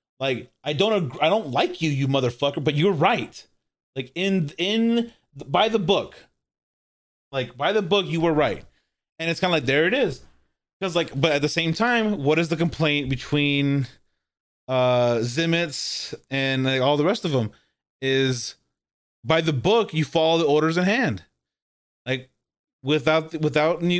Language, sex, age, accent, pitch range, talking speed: English, male, 30-49, American, 130-165 Hz, 175 wpm